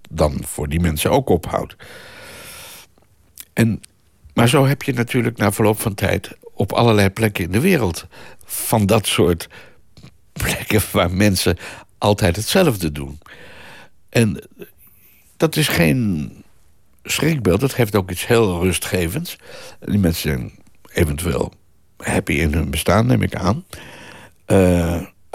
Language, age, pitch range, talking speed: Dutch, 60-79, 90-120 Hz, 125 wpm